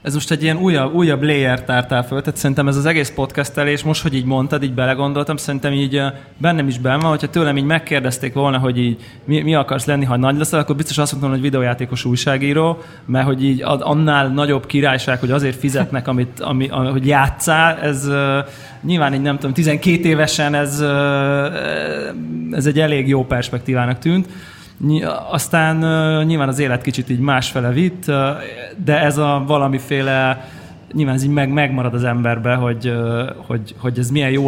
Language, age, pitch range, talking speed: Hungarian, 20-39, 125-145 Hz, 180 wpm